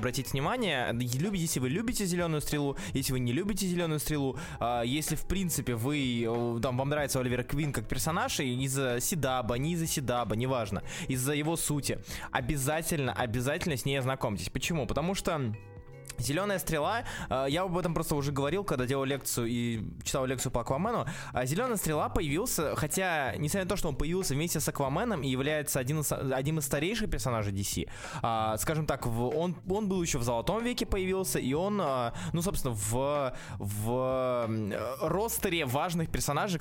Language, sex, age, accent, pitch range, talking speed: Russian, male, 20-39, native, 125-165 Hz, 160 wpm